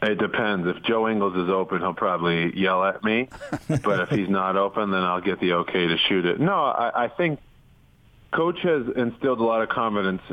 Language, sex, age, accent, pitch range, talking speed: English, male, 30-49, American, 95-105 Hz, 210 wpm